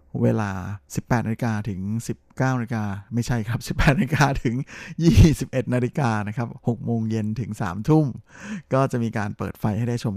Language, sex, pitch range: Thai, male, 110-130 Hz